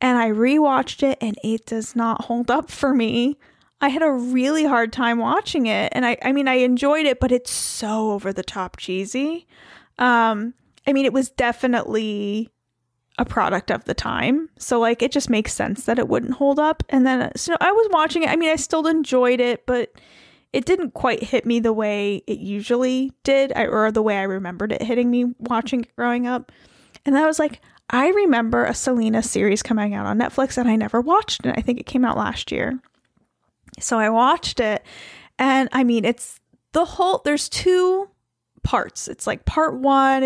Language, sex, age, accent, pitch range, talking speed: English, female, 10-29, American, 220-275 Hz, 200 wpm